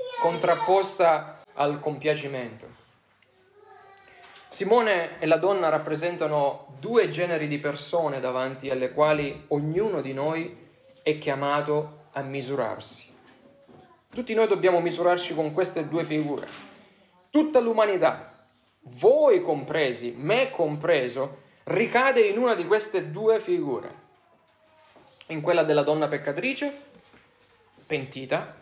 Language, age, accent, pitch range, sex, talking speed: Italian, 30-49, native, 145-195 Hz, male, 105 wpm